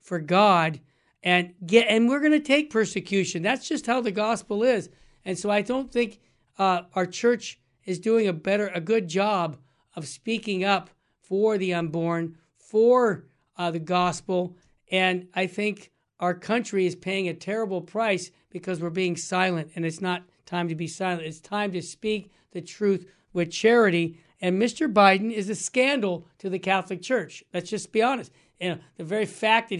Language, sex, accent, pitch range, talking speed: English, male, American, 175-220 Hz, 175 wpm